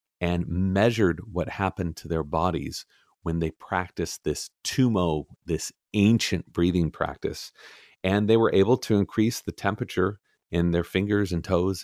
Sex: male